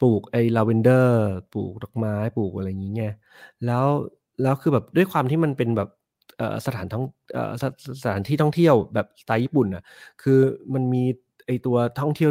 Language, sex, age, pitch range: Thai, male, 20-39, 115-145 Hz